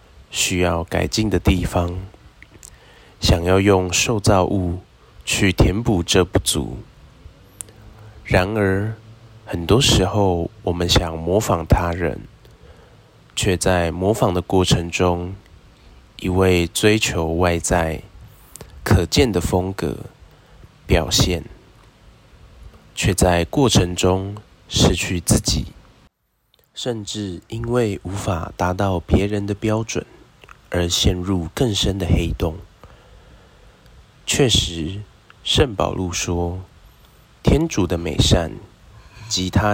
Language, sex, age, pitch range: Chinese, male, 20-39, 85-105 Hz